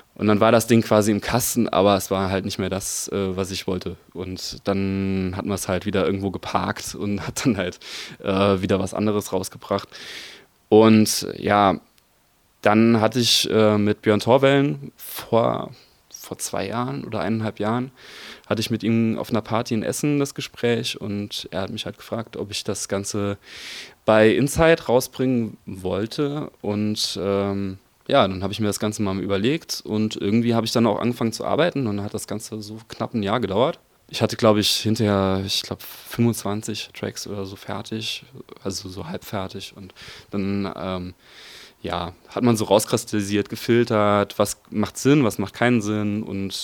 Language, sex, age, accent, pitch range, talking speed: German, male, 20-39, German, 95-110 Hz, 180 wpm